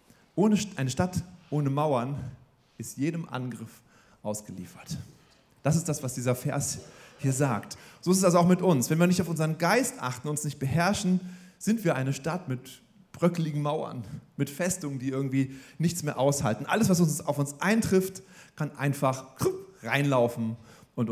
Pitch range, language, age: 120-165 Hz, German, 40-59